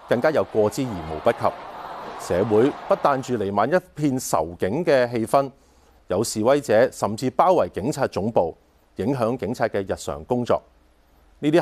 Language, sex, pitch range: Chinese, male, 90-140 Hz